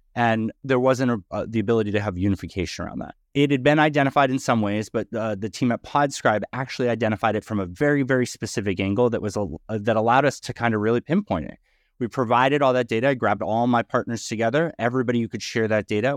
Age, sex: 30-49, male